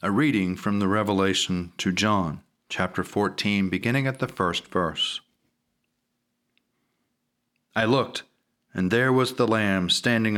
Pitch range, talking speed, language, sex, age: 110-130 Hz, 125 wpm, English, male, 40-59